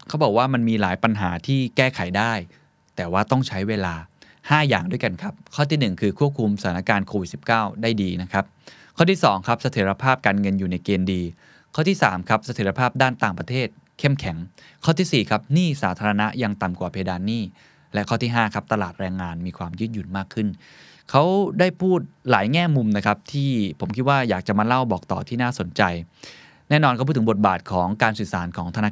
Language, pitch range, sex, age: Thai, 95-130 Hz, male, 20-39